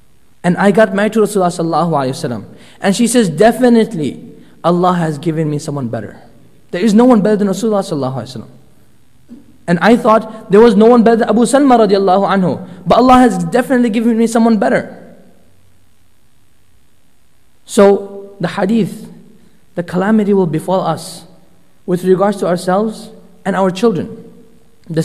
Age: 20-39